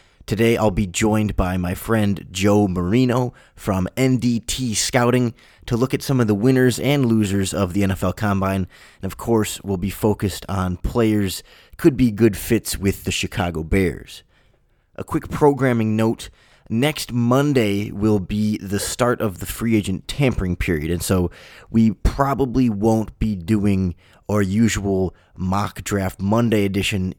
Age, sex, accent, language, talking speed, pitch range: 20-39, male, American, English, 155 wpm, 95-115 Hz